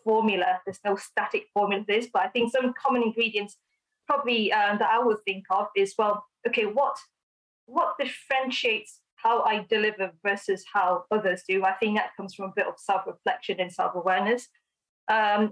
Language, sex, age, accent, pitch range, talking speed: English, female, 20-39, British, 200-235 Hz, 175 wpm